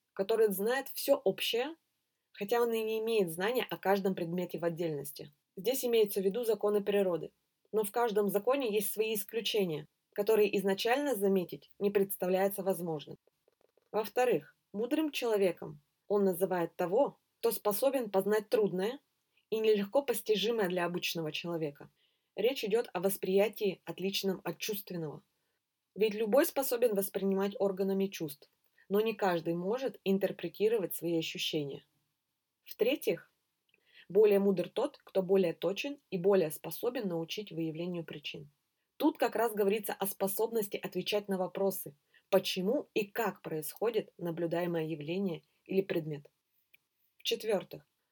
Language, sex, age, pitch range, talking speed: Russian, female, 20-39, 175-220 Hz, 125 wpm